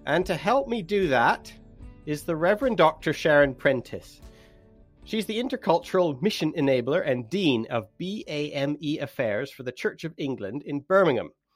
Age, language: 30-49, English